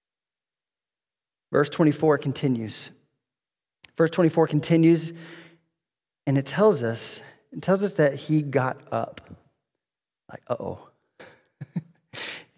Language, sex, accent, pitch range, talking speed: English, male, American, 165-235 Hz, 95 wpm